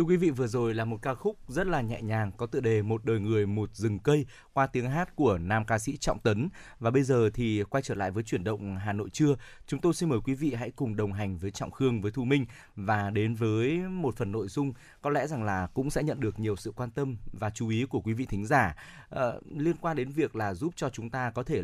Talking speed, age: 270 wpm, 20-39